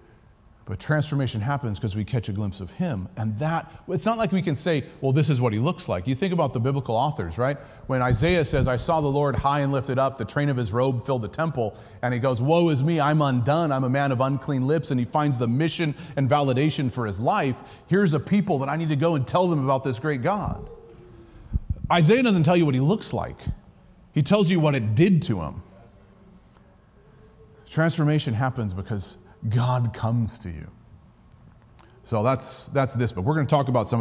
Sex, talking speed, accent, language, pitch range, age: male, 215 wpm, American, English, 110-145 Hz, 30-49